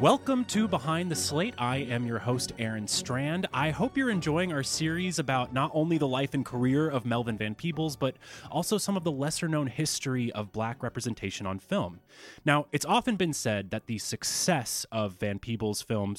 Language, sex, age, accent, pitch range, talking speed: English, male, 30-49, American, 105-155 Hz, 195 wpm